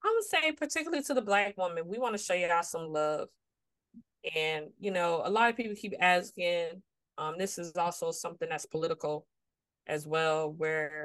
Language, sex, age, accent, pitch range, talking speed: English, female, 20-39, American, 155-200 Hz, 185 wpm